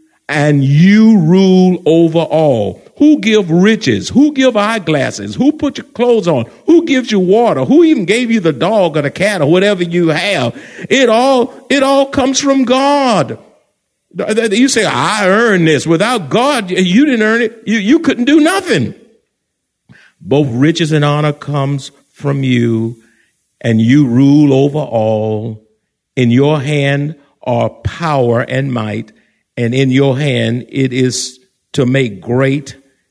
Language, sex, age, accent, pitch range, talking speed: English, male, 50-69, American, 120-190 Hz, 150 wpm